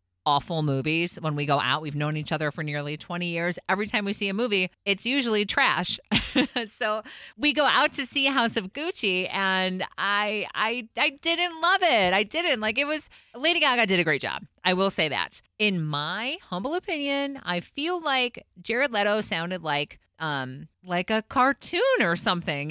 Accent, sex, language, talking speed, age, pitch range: American, female, English, 190 wpm, 30-49, 155-225 Hz